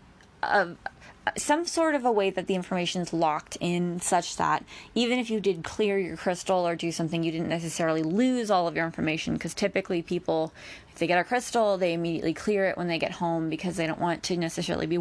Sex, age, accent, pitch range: female, 20-39, American, 165-205 Hz